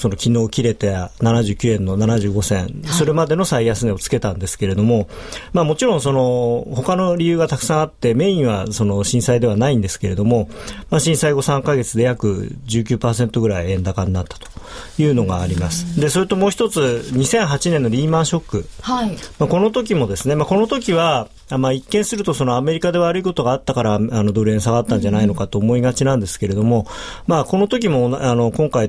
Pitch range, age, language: 110-155 Hz, 40-59, Japanese